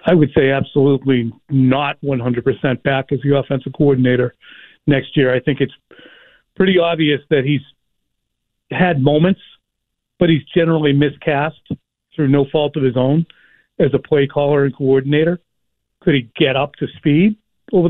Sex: male